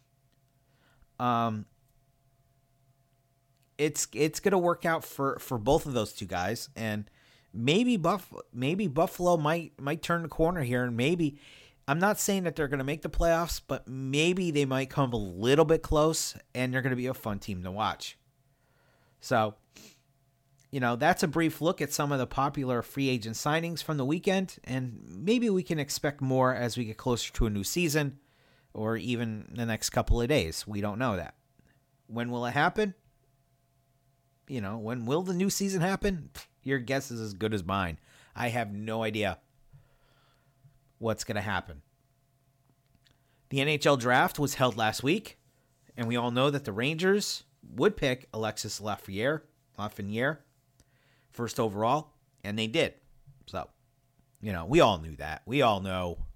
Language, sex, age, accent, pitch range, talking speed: English, male, 40-59, American, 120-145 Hz, 170 wpm